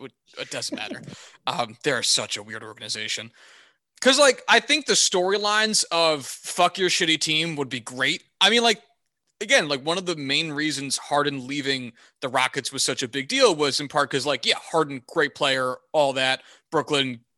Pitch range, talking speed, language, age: 135-190 Hz, 185 wpm, English, 20-39